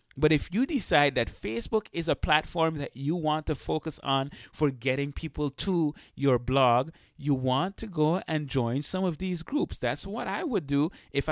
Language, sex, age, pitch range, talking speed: English, male, 30-49, 140-200 Hz, 195 wpm